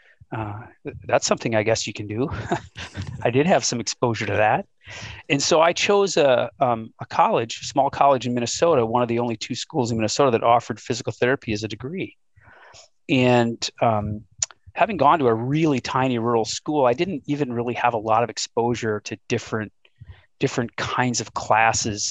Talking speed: 180 wpm